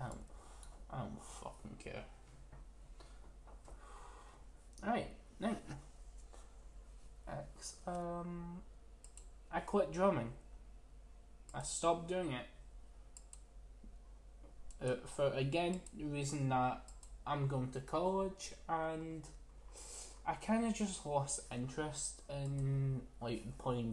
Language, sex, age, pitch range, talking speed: English, male, 20-39, 120-155 Hz, 90 wpm